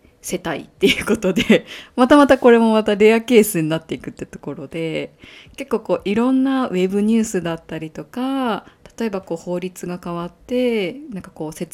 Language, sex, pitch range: Japanese, female, 165-230 Hz